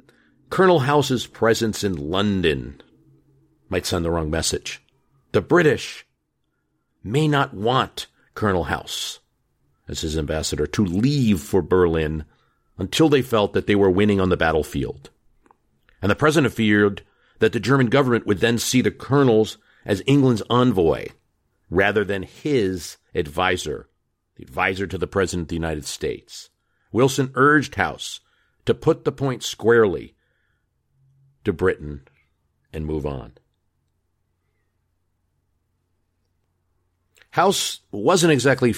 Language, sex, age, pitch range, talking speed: English, male, 50-69, 90-115 Hz, 120 wpm